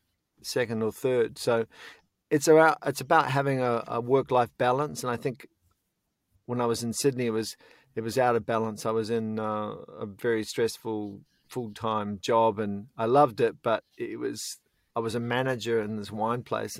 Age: 40-59